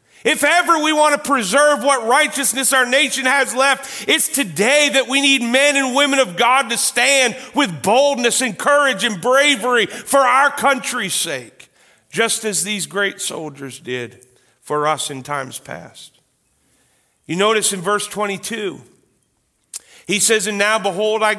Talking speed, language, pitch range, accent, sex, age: 155 wpm, English, 205-265 Hz, American, male, 40-59